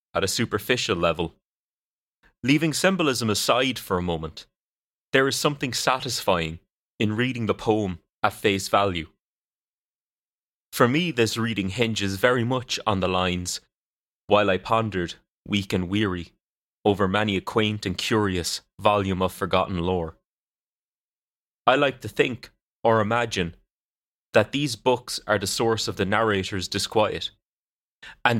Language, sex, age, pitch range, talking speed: English, male, 30-49, 95-120 Hz, 135 wpm